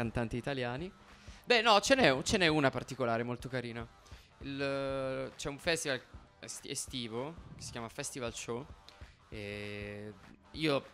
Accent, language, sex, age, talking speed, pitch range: native, Italian, male, 20-39, 135 wpm, 115-150 Hz